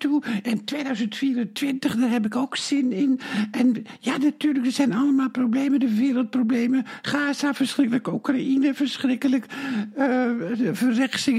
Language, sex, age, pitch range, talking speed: Dutch, male, 60-79, 245-285 Hz, 130 wpm